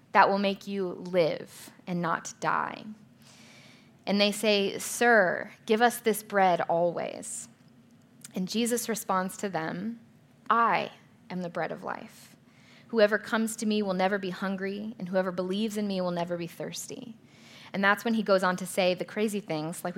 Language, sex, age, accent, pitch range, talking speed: English, female, 20-39, American, 180-220 Hz, 170 wpm